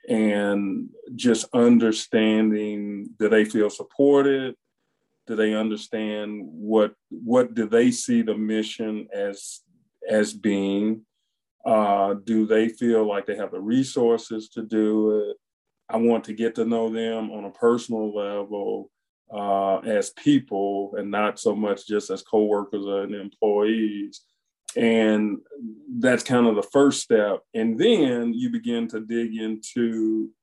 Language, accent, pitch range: English, American, 105-120 Hz